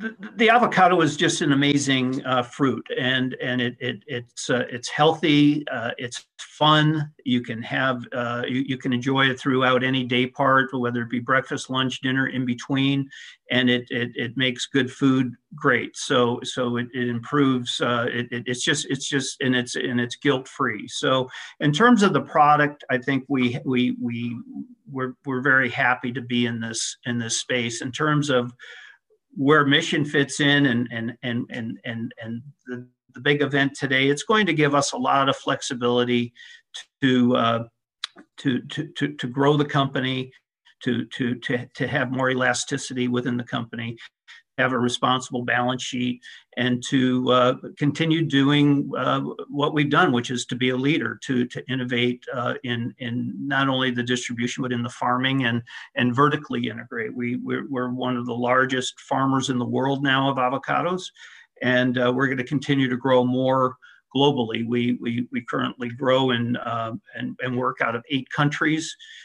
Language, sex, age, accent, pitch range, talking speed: English, male, 50-69, American, 125-140 Hz, 180 wpm